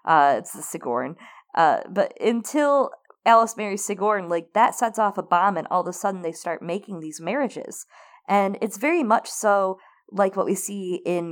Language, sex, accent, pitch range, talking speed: English, female, American, 160-220 Hz, 190 wpm